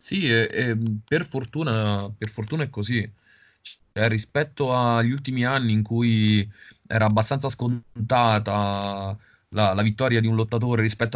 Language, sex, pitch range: Italian, male, 105-130 Hz